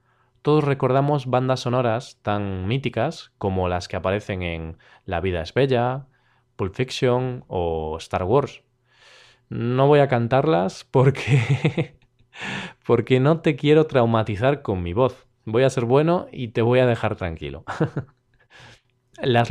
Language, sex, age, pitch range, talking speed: Spanish, male, 20-39, 110-135 Hz, 135 wpm